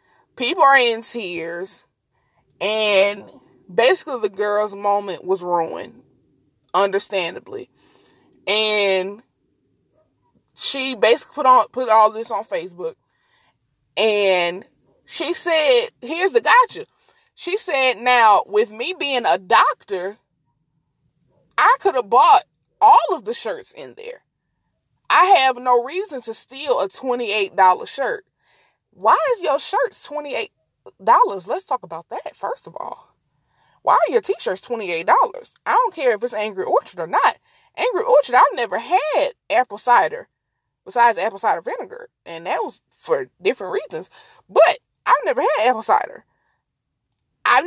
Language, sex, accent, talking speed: English, female, American, 130 wpm